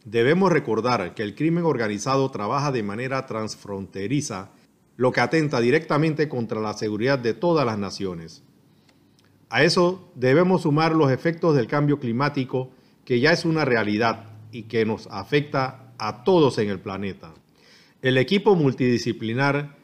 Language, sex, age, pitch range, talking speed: Spanish, male, 40-59, 115-155 Hz, 140 wpm